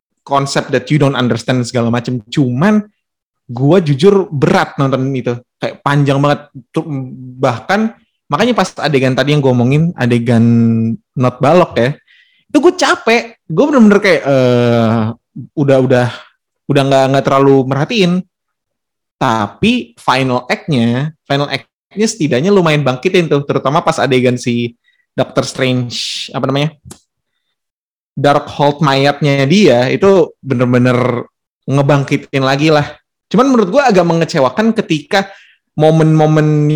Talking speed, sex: 120 wpm, male